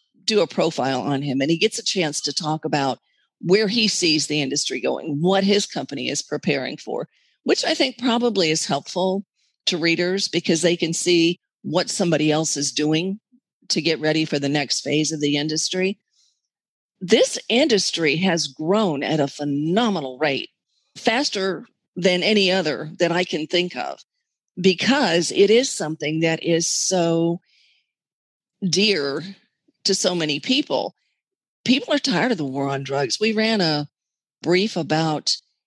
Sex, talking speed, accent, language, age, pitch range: female, 160 wpm, American, English, 50-69, 155-205 Hz